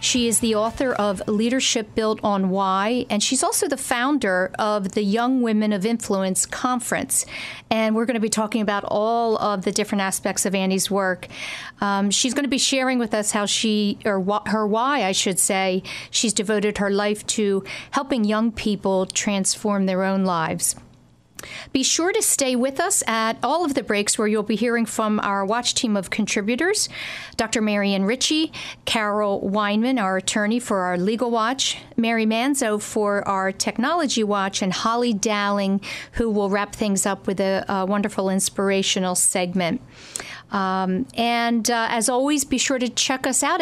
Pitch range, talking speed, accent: 200-245 Hz, 175 wpm, American